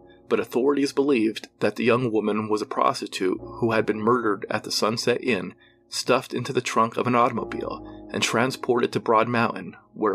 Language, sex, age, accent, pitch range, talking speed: English, male, 40-59, American, 110-150 Hz, 185 wpm